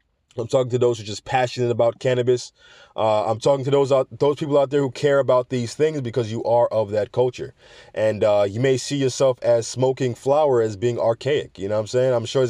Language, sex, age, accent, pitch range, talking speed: English, male, 20-39, American, 115-145 Hz, 245 wpm